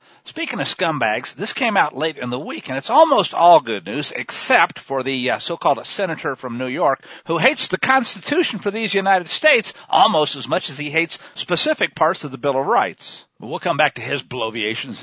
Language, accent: English, American